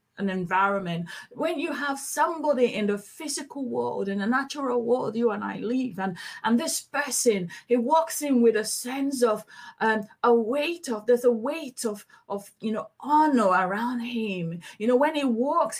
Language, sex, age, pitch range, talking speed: English, female, 30-49, 190-260 Hz, 180 wpm